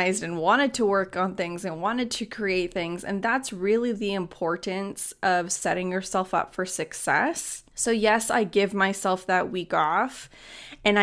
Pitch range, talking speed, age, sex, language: 175-215 Hz, 170 wpm, 20-39, female, English